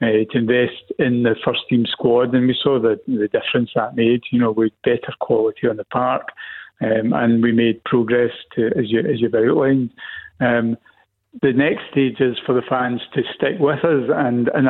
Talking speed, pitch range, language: 195 wpm, 120-130 Hz, English